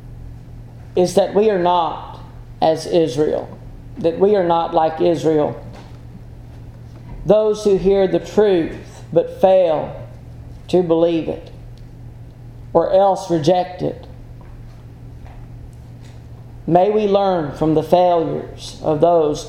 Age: 40-59